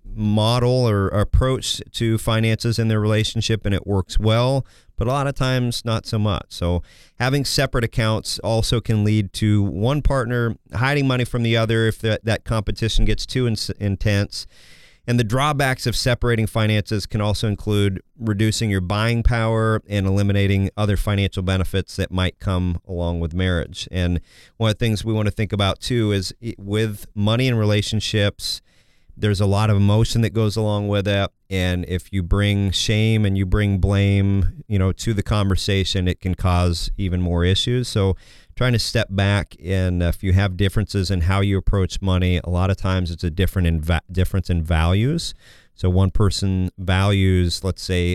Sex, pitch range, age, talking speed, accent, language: male, 90-110 Hz, 40-59, 180 wpm, American, English